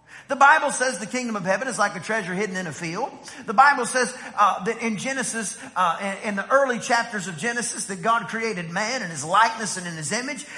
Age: 40-59